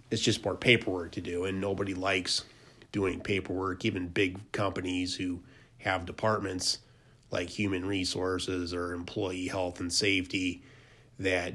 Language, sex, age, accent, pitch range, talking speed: English, male, 30-49, American, 95-110 Hz, 135 wpm